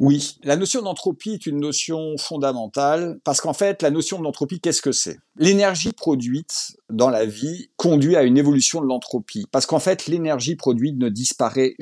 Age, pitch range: 50-69, 135-195 Hz